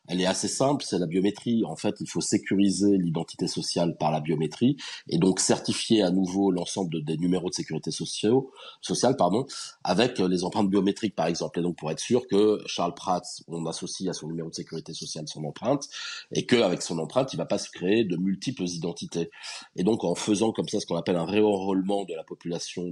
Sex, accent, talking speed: male, French, 215 wpm